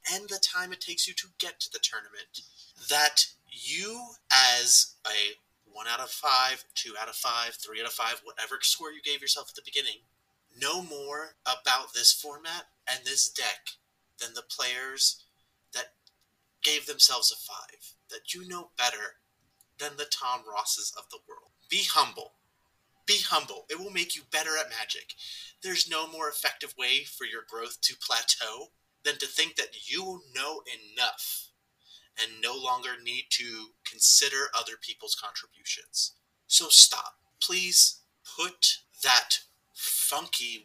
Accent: American